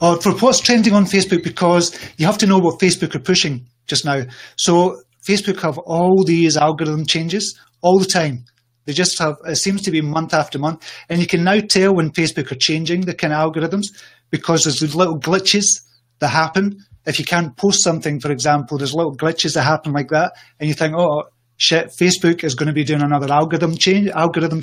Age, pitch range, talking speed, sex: 30-49, 150-180 Hz, 205 wpm, male